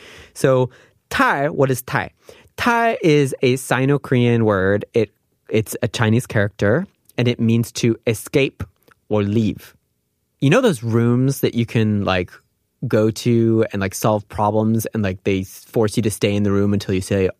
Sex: male